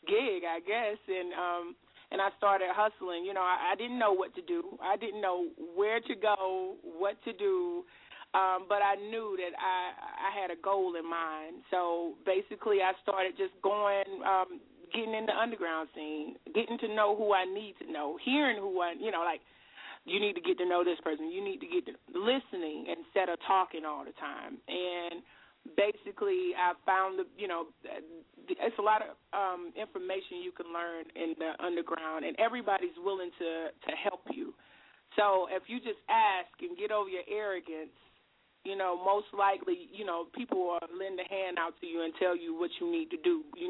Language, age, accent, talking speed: English, 30-49, American, 200 wpm